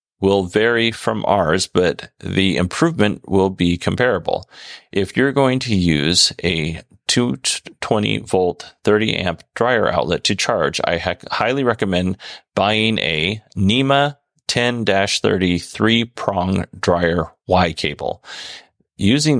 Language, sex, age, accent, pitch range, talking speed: English, male, 30-49, American, 90-115 Hz, 105 wpm